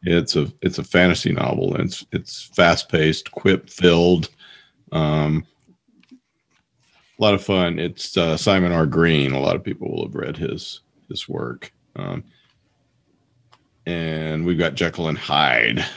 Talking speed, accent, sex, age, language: 145 wpm, American, male, 40-59, English